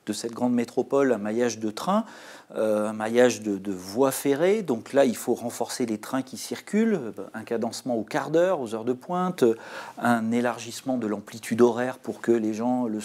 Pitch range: 110-140 Hz